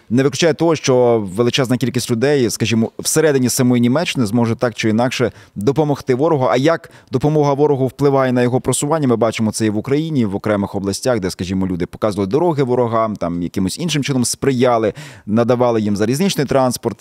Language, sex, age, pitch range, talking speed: Ukrainian, male, 20-39, 115-150 Hz, 175 wpm